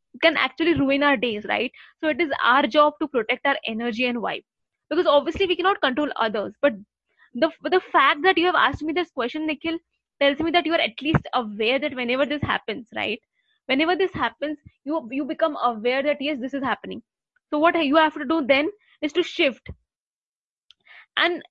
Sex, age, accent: female, 20-39, Indian